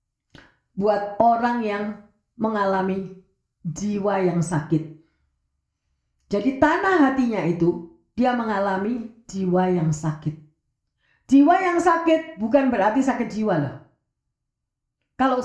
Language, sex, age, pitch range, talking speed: Indonesian, female, 40-59, 180-285 Hz, 95 wpm